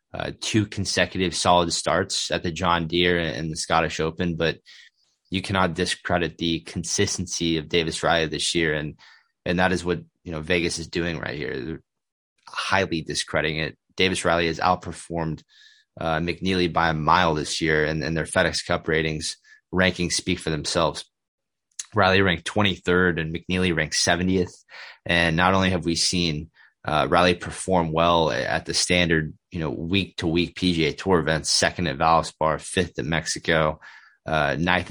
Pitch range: 80-90 Hz